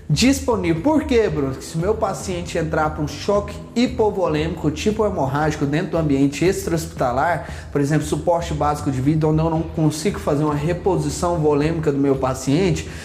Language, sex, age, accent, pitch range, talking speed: Portuguese, male, 20-39, Brazilian, 155-210 Hz, 160 wpm